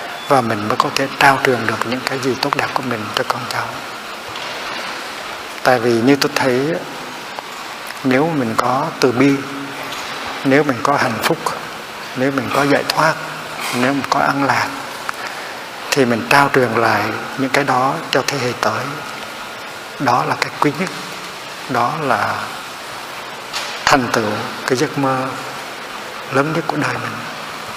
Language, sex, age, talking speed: Vietnamese, male, 60-79, 155 wpm